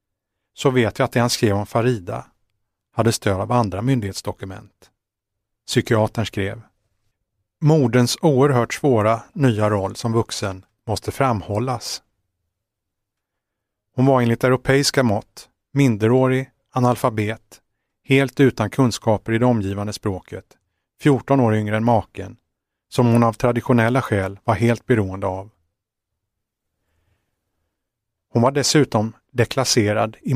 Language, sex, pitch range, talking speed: Swedish, male, 105-125 Hz, 115 wpm